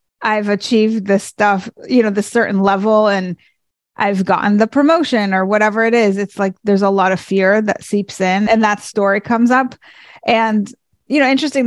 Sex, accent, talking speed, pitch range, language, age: female, American, 190 wpm, 200-235 Hz, English, 30-49